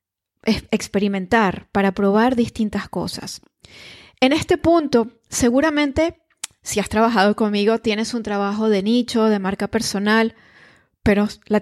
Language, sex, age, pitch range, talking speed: Spanish, female, 20-39, 205-245 Hz, 120 wpm